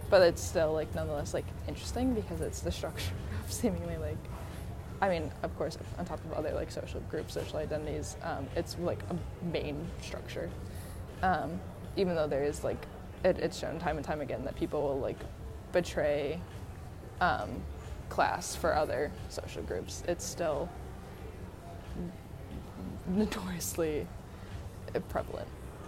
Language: English